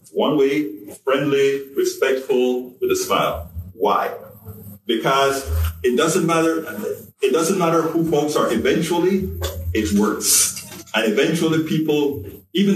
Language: English